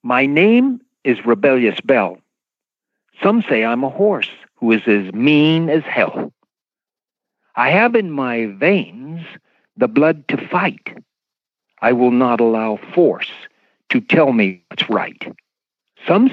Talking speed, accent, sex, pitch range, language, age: 130 wpm, American, male, 130-205 Hz, English, 60-79